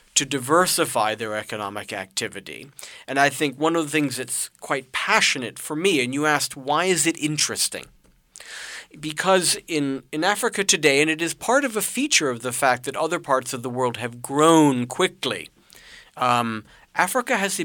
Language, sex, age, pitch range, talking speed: English, male, 50-69, 125-160 Hz, 175 wpm